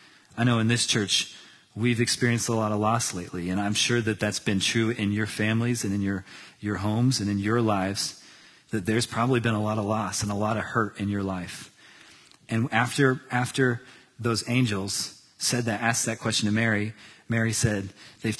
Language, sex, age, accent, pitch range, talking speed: English, male, 30-49, American, 105-130 Hz, 200 wpm